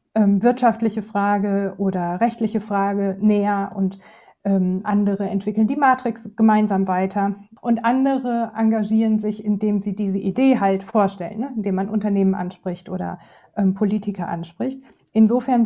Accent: German